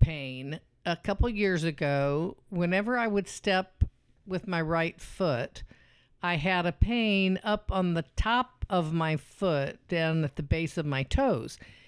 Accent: American